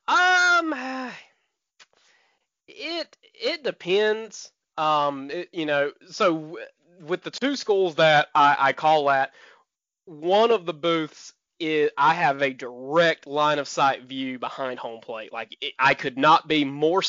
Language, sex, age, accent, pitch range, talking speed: English, male, 20-39, American, 140-215 Hz, 150 wpm